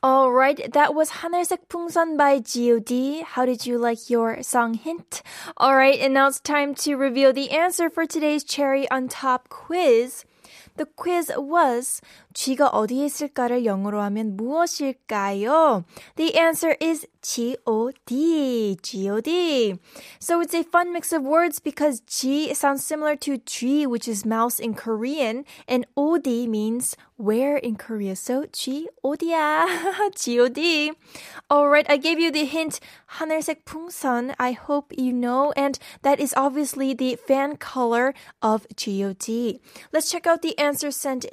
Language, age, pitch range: Korean, 10-29, 250-315 Hz